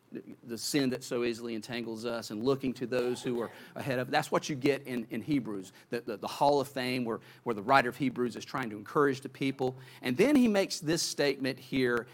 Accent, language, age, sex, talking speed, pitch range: American, English, 40-59, male, 230 wpm, 125-170 Hz